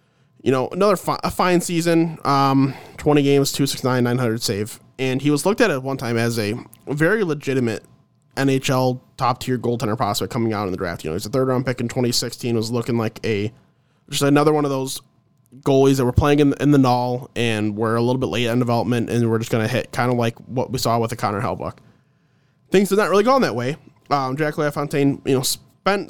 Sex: male